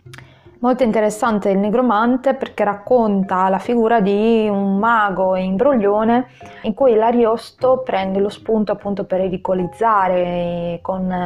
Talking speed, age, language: 125 wpm, 20-39, Italian